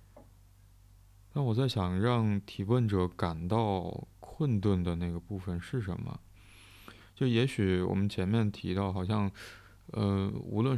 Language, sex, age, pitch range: Chinese, male, 20-39, 90-105 Hz